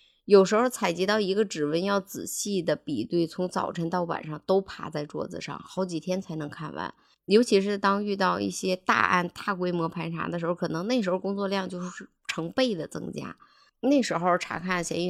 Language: Chinese